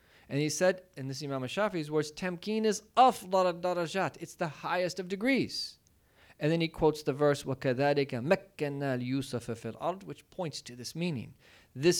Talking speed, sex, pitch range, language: 165 wpm, male, 130-185 Hz, English